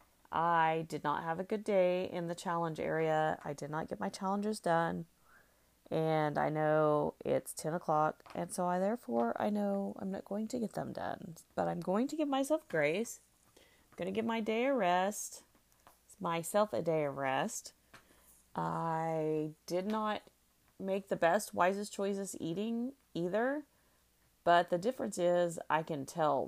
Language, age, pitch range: English, 30-49, 140-190 Hz